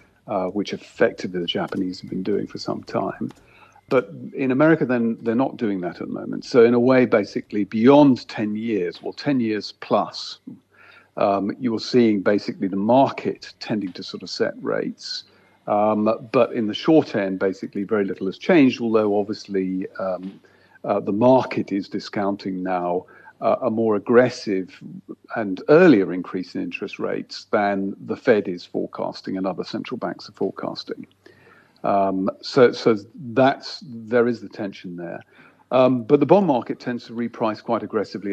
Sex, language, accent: male, English, British